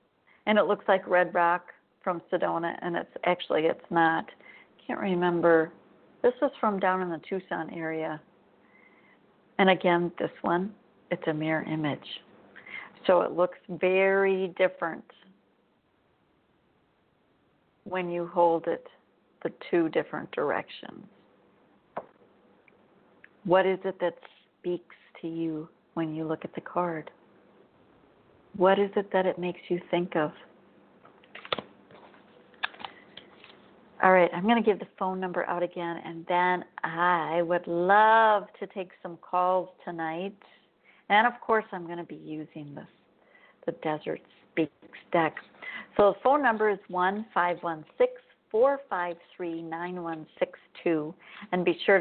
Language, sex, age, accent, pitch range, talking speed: English, female, 50-69, American, 170-195 Hz, 135 wpm